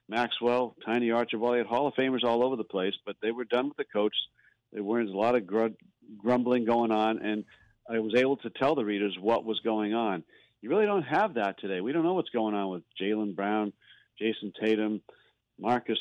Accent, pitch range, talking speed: American, 100-120 Hz, 215 wpm